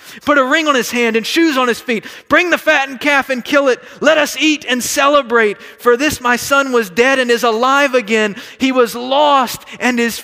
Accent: American